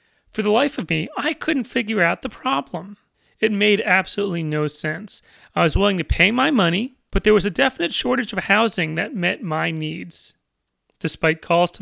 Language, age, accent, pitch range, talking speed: English, 30-49, American, 165-220 Hz, 195 wpm